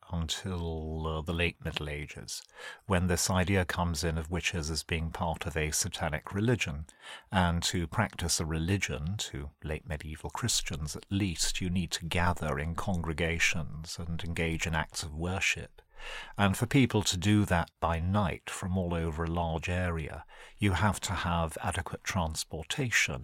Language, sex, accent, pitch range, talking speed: English, male, British, 80-95 Hz, 165 wpm